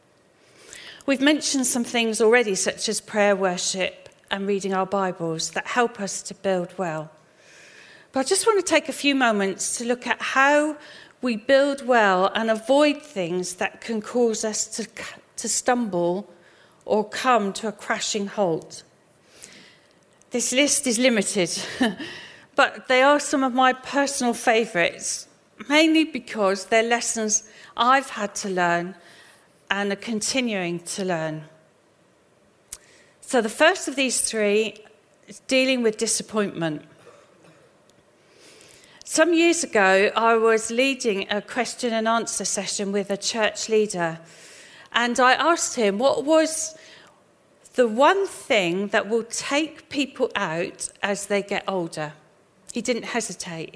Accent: British